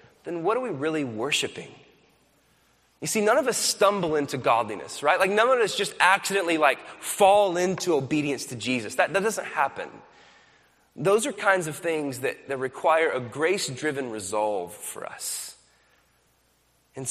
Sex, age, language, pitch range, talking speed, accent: male, 20-39, English, 150-205 Hz, 160 wpm, American